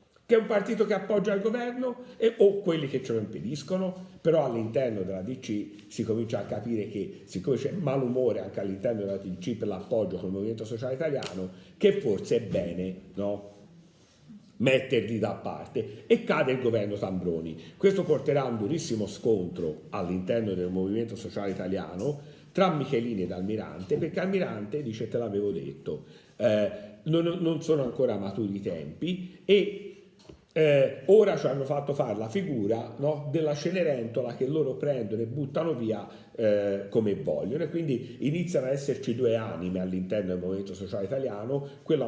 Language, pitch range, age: Italian, 100-165 Hz, 50-69